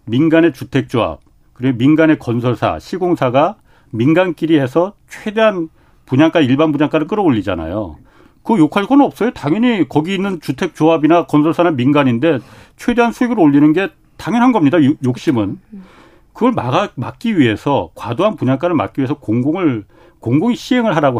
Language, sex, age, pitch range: Korean, male, 40-59, 130-180 Hz